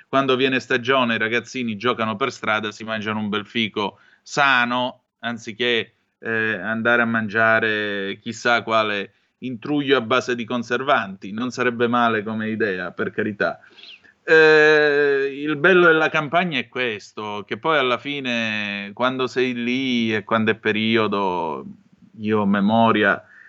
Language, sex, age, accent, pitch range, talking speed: Italian, male, 30-49, native, 105-120 Hz, 135 wpm